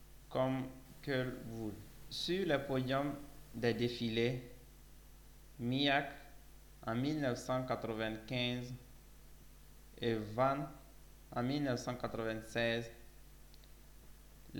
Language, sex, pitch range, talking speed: French, male, 120-140 Hz, 60 wpm